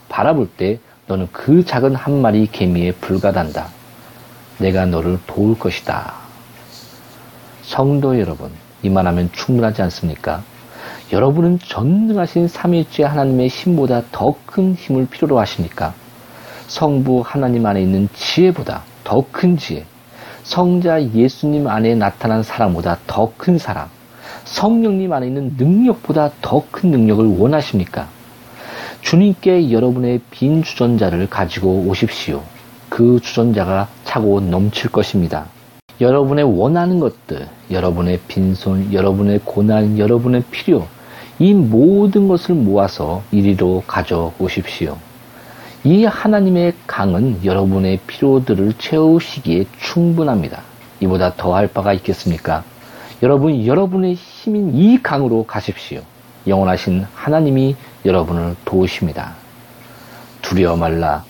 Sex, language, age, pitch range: male, Korean, 40-59, 95-140 Hz